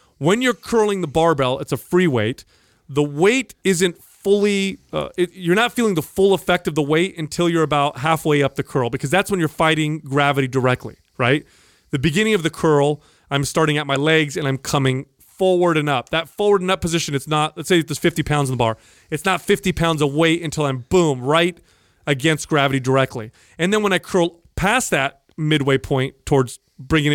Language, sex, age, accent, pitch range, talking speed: English, male, 30-49, American, 135-175 Hz, 205 wpm